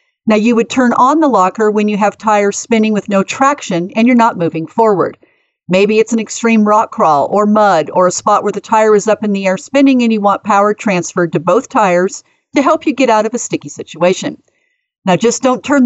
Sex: female